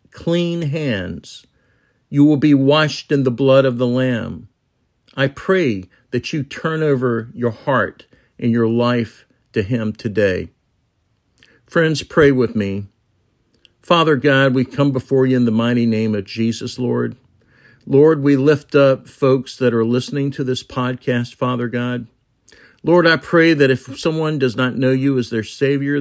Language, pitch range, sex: English, 115-145 Hz, male